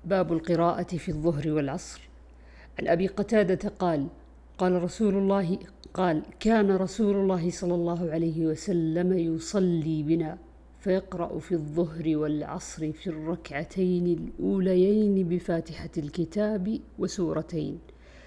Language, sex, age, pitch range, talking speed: Arabic, female, 50-69, 165-200 Hz, 105 wpm